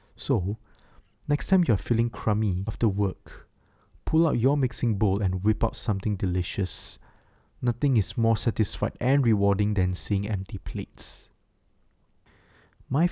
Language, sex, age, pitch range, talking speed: English, male, 20-39, 100-120 Hz, 135 wpm